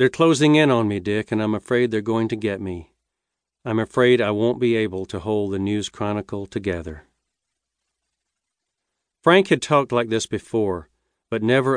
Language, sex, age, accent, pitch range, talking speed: English, male, 50-69, American, 100-125 Hz, 175 wpm